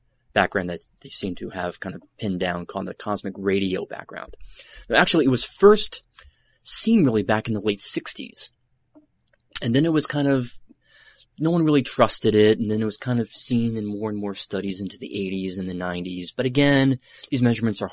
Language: English